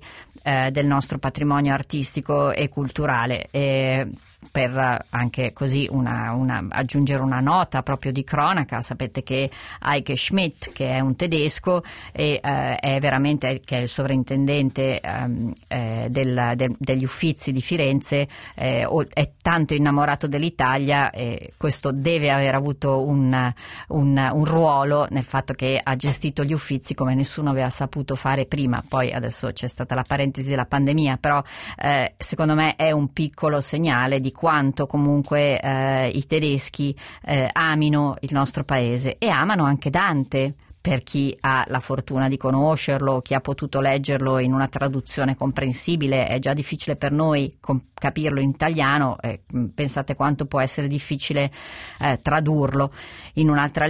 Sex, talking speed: female, 150 wpm